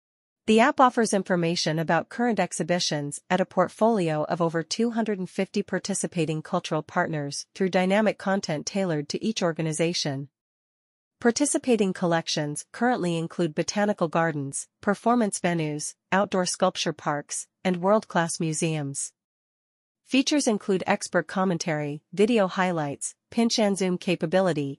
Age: 40-59